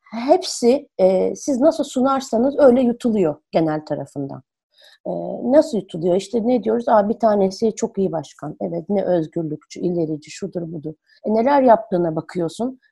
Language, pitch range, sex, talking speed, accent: Turkish, 175-265 Hz, female, 145 wpm, native